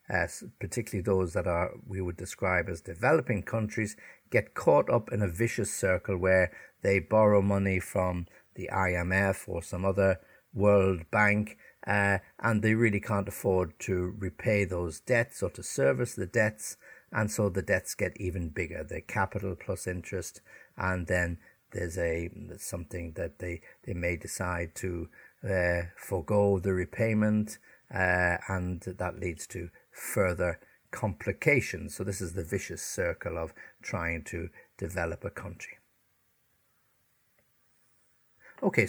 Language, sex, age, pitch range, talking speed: English, male, 60-79, 90-110 Hz, 140 wpm